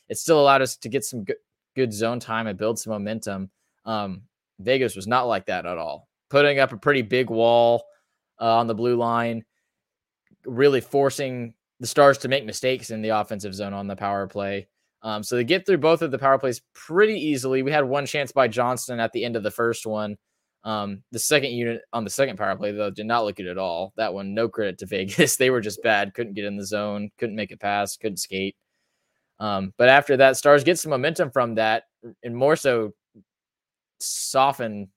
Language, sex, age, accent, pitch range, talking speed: English, male, 20-39, American, 105-130 Hz, 215 wpm